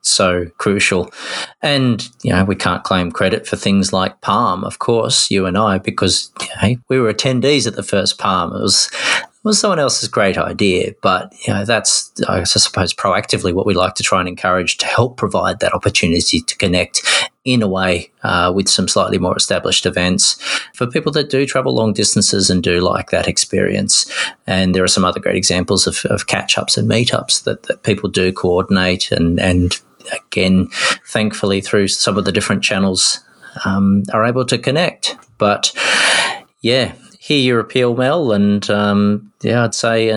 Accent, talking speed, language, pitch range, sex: Australian, 185 wpm, English, 95-120 Hz, male